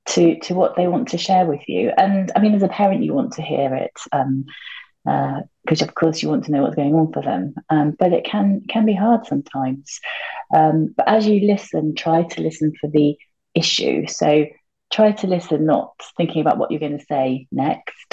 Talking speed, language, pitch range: 220 wpm, English, 155-190 Hz